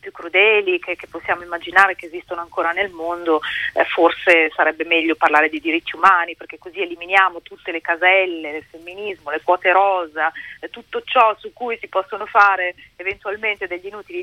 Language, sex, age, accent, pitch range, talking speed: Italian, female, 40-59, native, 155-190 Hz, 165 wpm